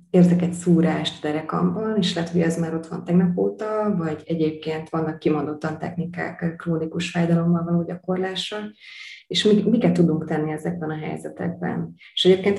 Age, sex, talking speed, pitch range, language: 20-39, female, 145 wpm, 160-175 Hz, Hungarian